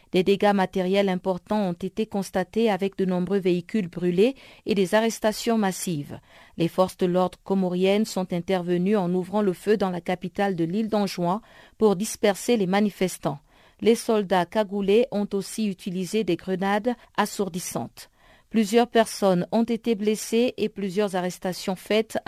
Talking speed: 150 wpm